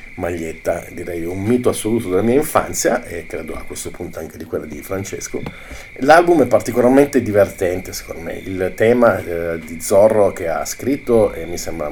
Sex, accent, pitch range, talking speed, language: male, native, 85-110 Hz, 175 wpm, Italian